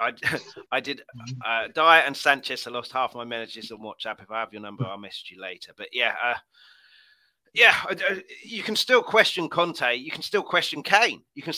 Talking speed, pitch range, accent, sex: 205 wpm, 130-200 Hz, British, male